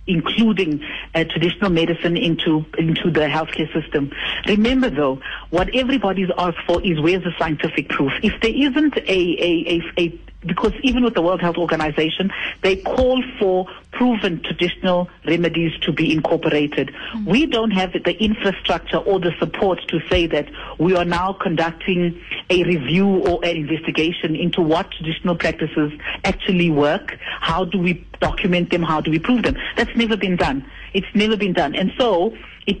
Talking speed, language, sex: 165 wpm, English, female